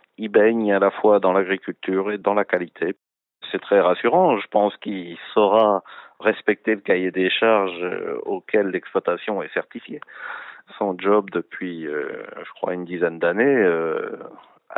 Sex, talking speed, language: male, 150 wpm, French